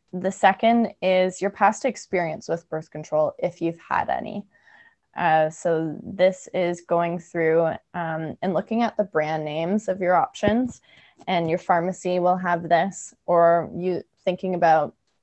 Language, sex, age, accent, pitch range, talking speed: English, female, 20-39, American, 170-200 Hz, 155 wpm